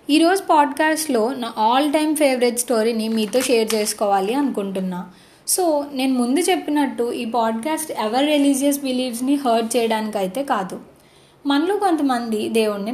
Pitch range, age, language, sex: 225-300 Hz, 20-39, Telugu, female